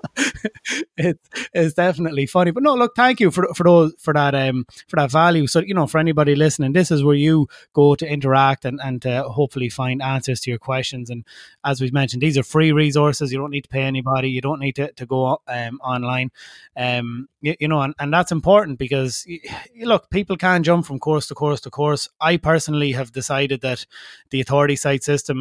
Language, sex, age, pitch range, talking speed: English, male, 20-39, 130-150 Hz, 215 wpm